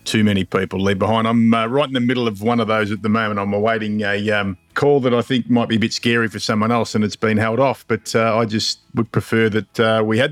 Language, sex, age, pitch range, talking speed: English, male, 50-69, 110-135 Hz, 290 wpm